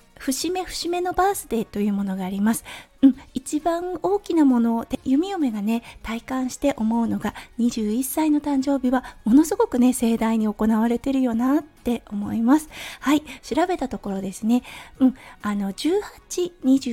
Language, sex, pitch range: Japanese, female, 220-300 Hz